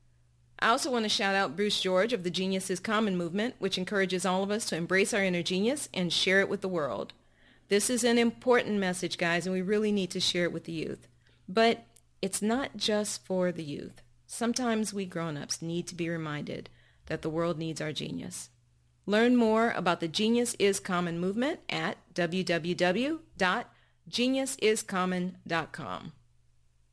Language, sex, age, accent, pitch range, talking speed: English, female, 40-59, American, 170-220 Hz, 170 wpm